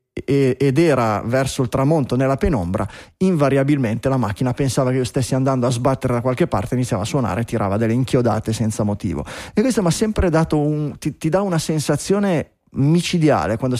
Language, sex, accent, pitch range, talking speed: Italian, male, native, 120-145 Hz, 185 wpm